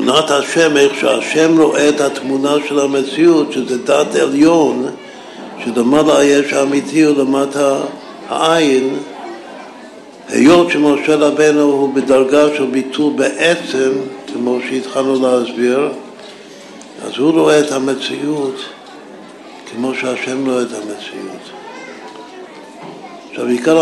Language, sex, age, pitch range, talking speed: Hebrew, male, 60-79, 120-145 Hz, 105 wpm